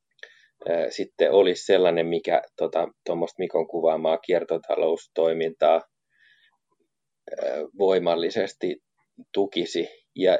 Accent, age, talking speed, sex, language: native, 30-49, 70 wpm, male, Finnish